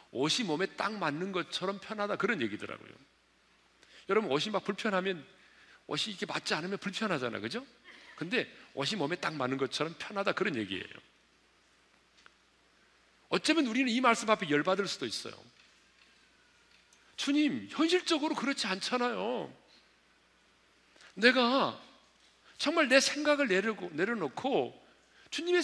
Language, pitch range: Korean, 190-315 Hz